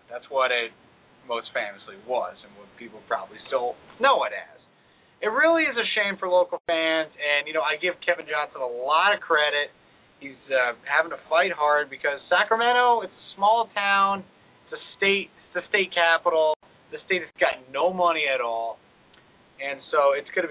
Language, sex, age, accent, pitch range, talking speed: English, male, 30-49, American, 140-195 Hz, 185 wpm